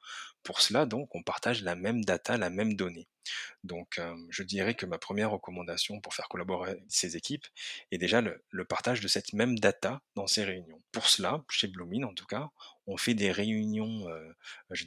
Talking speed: 200 wpm